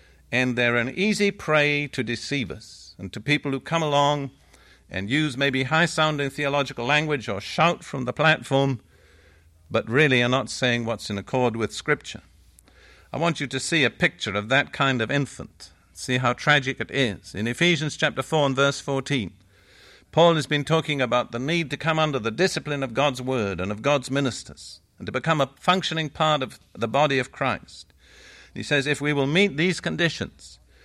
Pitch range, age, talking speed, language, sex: 115-155 Hz, 50-69, 185 wpm, English, male